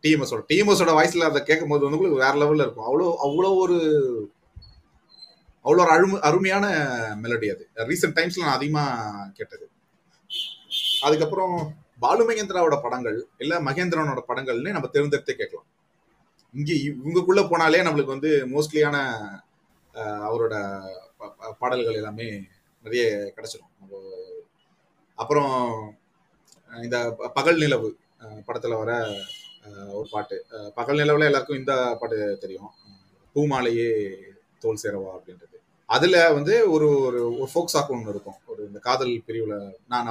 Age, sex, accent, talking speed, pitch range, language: 30-49, male, native, 115 wpm, 120-195 Hz, Tamil